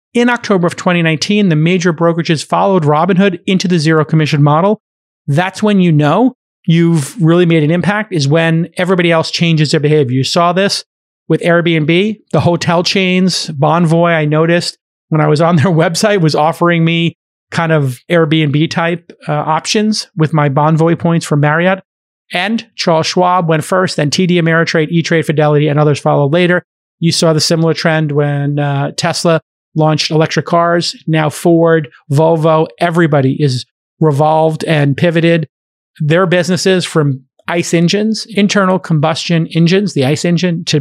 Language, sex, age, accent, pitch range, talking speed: English, male, 30-49, American, 155-175 Hz, 155 wpm